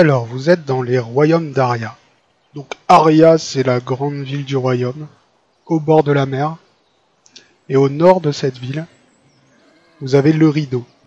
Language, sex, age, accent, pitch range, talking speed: French, male, 20-39, French, 130-155 Hz, 165 wpm